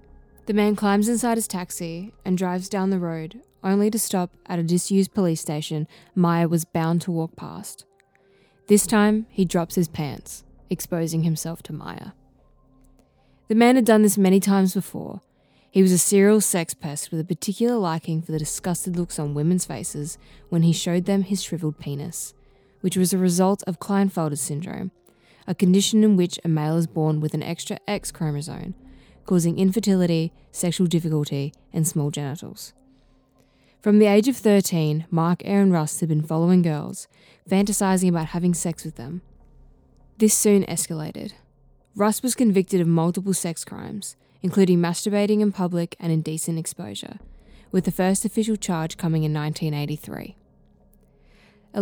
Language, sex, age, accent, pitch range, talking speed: English, female, 20-39, Australian, 160-195 Hz, 160 wpm